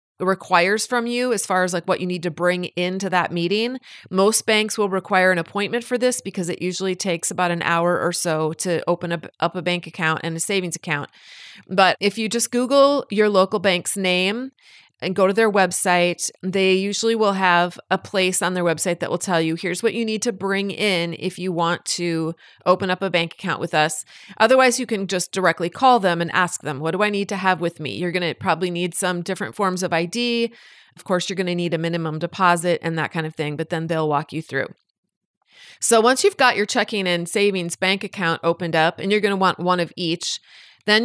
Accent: American